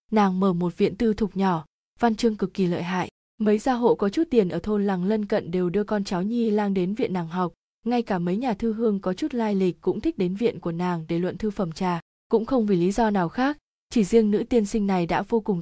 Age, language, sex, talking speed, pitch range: 20-39, Vietnamese, female, 275 wpm, 185-230 Hz